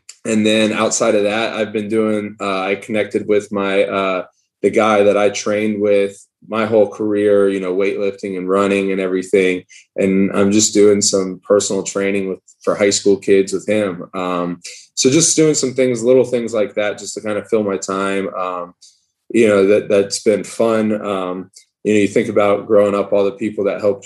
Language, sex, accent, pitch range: English, male, American, 95-105 Hz